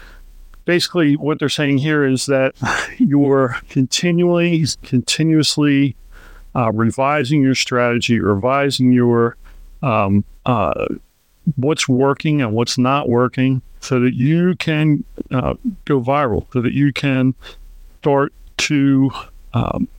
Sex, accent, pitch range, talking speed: male, American, 125-145 Hz, 115 wpm